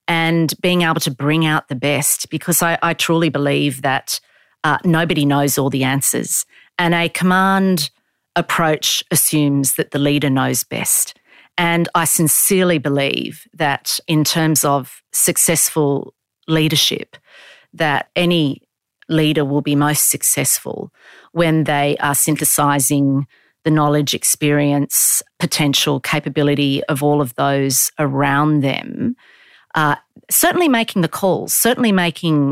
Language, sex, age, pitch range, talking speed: English, female, 40-59, 145-170 Hz, 125 wpm